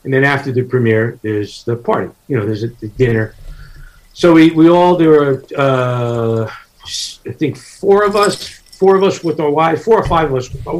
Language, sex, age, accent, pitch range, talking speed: English, male, 50-69, American, 120-155 Hz, 210 wpm